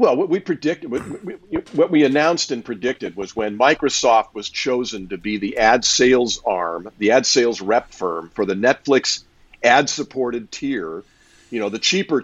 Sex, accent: male, American